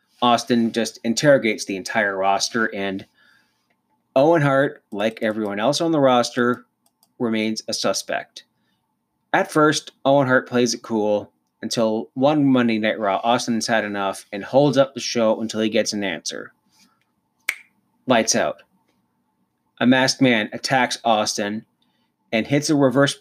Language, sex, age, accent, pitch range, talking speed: English, male, 30-49, American, 110-135 Hz, 140 wpm